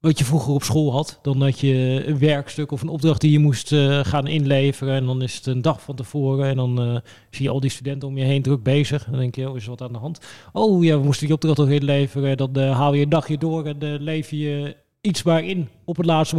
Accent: Dutch